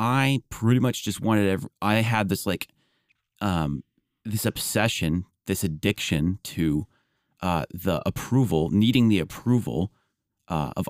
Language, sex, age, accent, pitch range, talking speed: English, male, 30-49, American, 90-115 Hz, 125 wpm